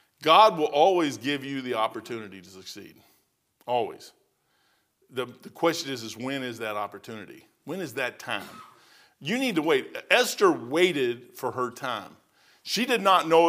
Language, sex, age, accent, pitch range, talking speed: English, male, 50-69, American, 150-220 Hz, 160 wpm